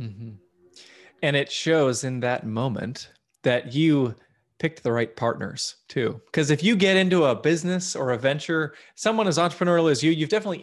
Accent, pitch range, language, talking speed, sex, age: American, 120-150 Hz, English, 175 wpm, male, 20-39